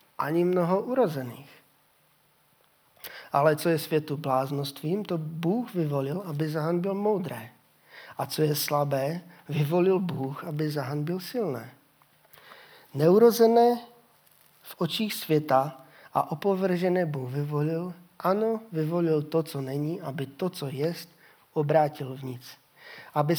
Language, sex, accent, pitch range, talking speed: Czech, male, native, 145-180 Hz, 120 wpm